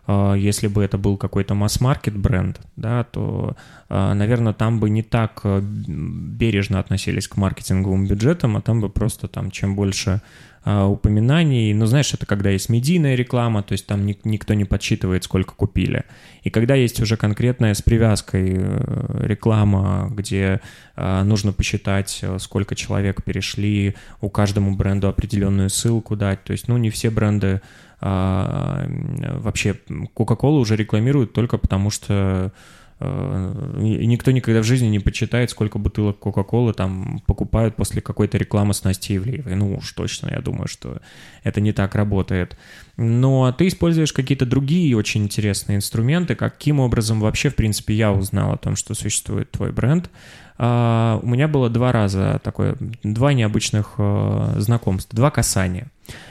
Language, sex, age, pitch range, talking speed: Russian, male, 20-39, 100-120 Hz, 145 wpm